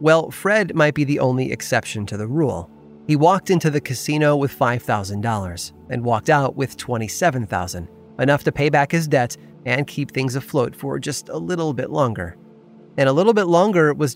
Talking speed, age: 185 wpm, 30-49